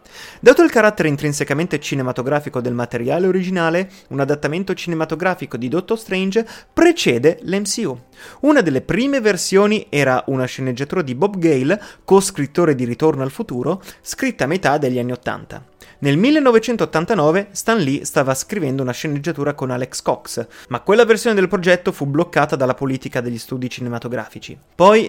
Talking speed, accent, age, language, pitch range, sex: 145 wpm, native, 30-49, Italian, 130-190 Hz, male